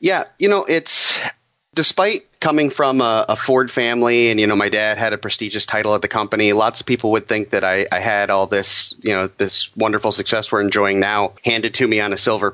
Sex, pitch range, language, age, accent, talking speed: male, 100-125 Hz, English, 30-49, American, 230 wpm